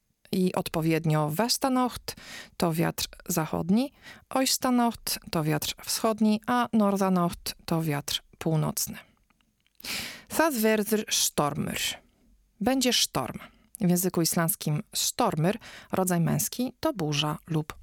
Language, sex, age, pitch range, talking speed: Polish, female, 40-59, 160-230 Hz, 95 wpm